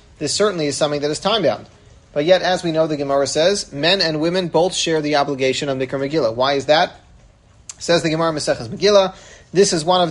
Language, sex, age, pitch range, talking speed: English, male, 40-59, 160-215 Hz, 220 wpm